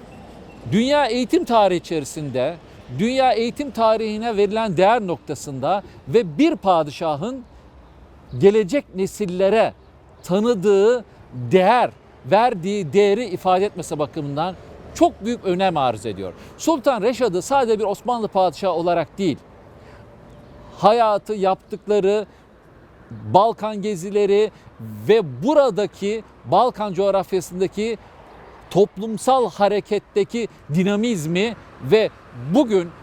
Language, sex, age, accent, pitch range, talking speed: Turkish, male, 50-69, native, 160-215 Hz, 85 wpm